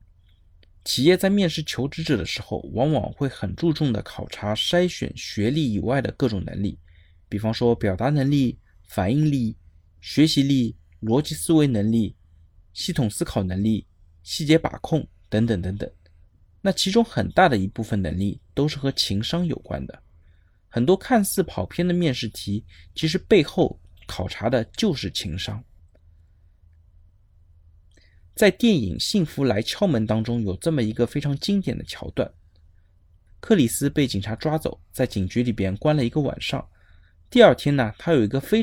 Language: Chinese